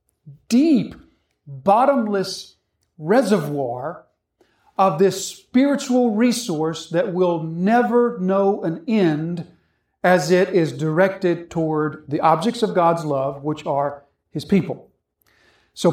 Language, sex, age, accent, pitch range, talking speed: English, male, 40-59, American, 155-195 Hz, 105 wpm